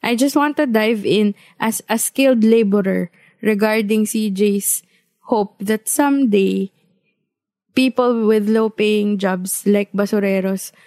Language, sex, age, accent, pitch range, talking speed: English, female, 20-39, Filipino, 195-225 Hz, 115 wpm